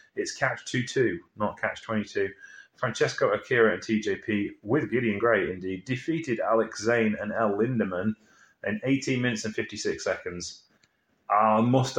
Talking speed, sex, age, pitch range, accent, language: 150 wpm, male, 30-49, 105-130 Hz, British, English